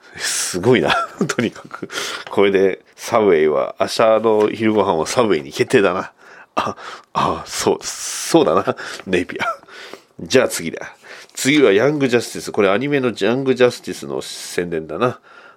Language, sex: Japanese, male